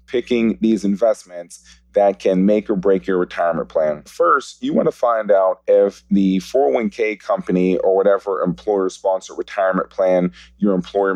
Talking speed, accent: 145 wpm, American